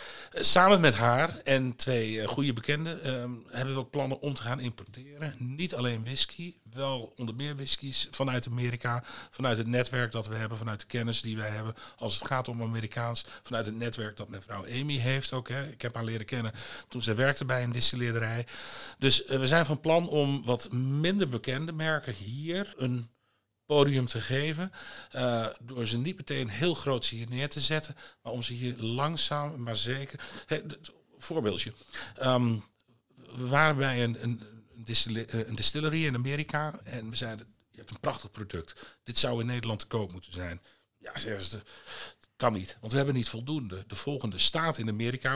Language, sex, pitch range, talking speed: Dutch, male, 115-140 Hz, 180 wpm